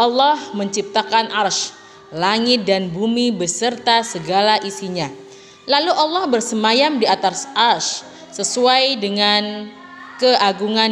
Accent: native